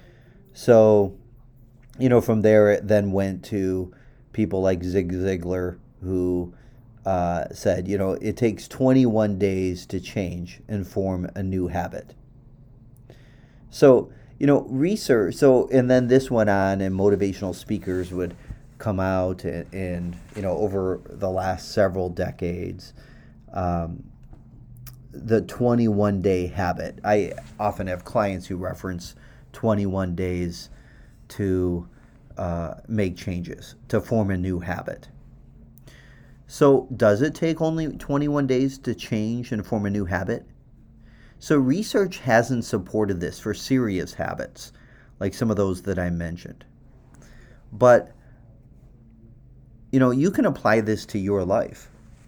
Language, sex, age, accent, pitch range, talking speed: English, male, 30-49, American, 95-125 Hz, 130 wpm